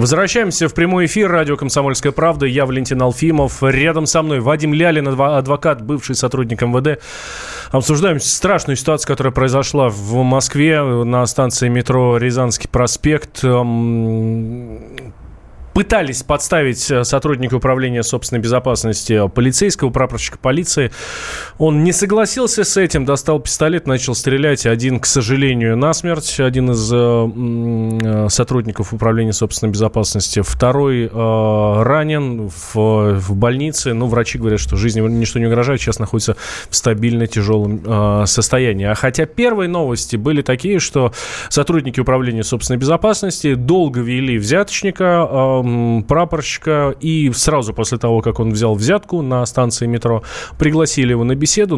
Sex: male